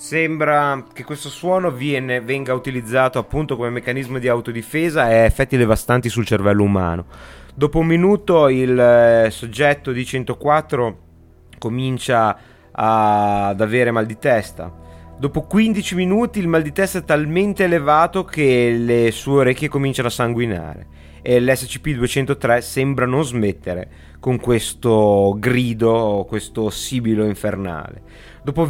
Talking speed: 130 wpm